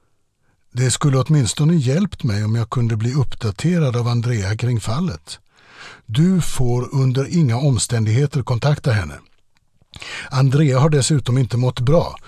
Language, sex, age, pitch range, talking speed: Swedish, male, 60-79, 110-140 Hz, 130 wpm